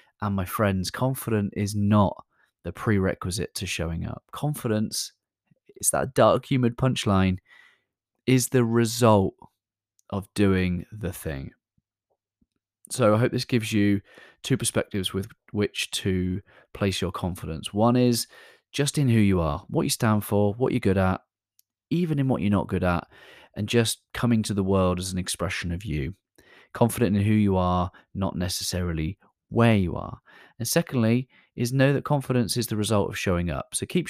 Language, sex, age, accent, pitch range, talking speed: English, male, 30-49, British, 95-120 Hz, 165 wpm